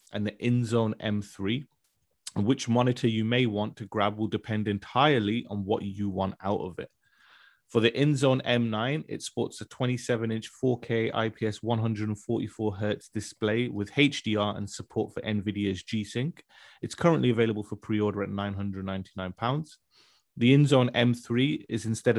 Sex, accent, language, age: male, British, English, 30-49